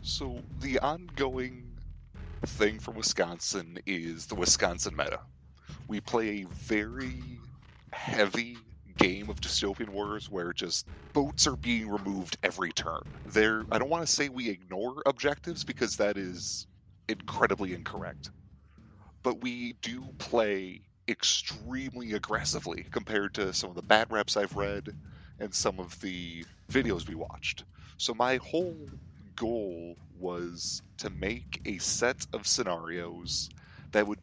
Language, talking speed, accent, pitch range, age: English, 135 wpm, American, 85-110 Hz, 30-49